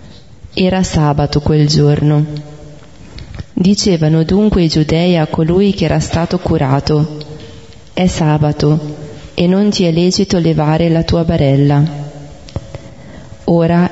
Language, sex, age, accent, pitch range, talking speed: Italian, female, 30-49, native, 155-180 Hz, 110 wpm